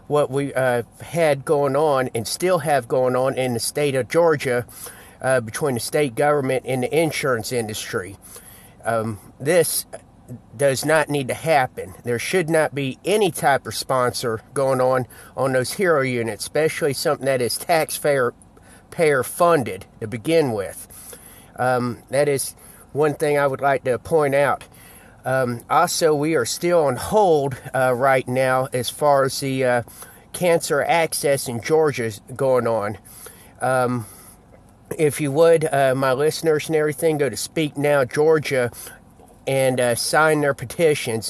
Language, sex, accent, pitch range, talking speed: English, male, American, 120-145 Hz, 155 wpm